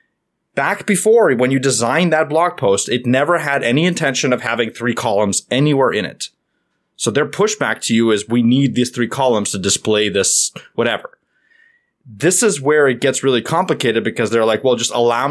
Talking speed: 190 wpm